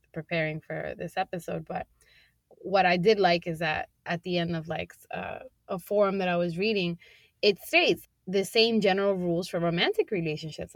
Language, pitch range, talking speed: English, 175-215 Hz, 180 wpm